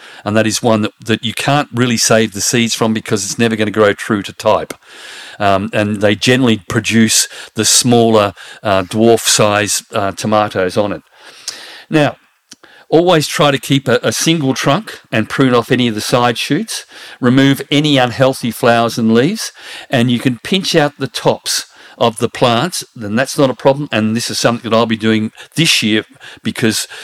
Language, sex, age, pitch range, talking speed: English, male, 50-69, 110-135 Hz, 185 wpm